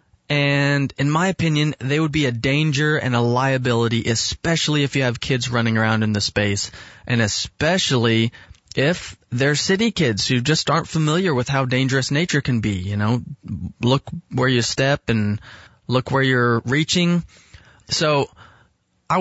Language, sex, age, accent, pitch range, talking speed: English, male, 20-39, American, 115-150 Hz, 160 wpm